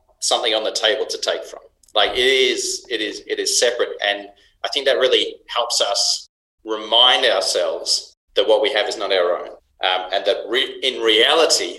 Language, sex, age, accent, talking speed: English, male, 30-49, Australian, 195 wpm